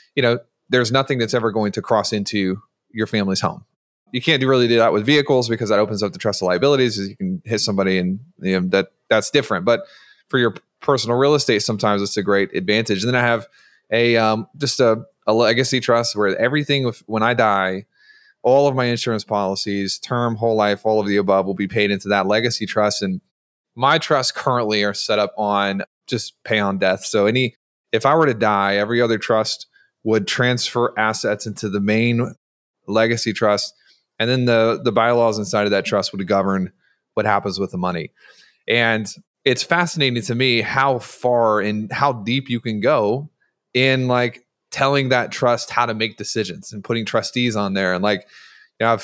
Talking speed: 200 wpm